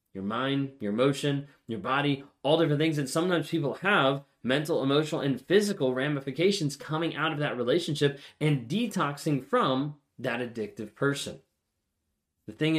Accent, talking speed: American, 145 wpm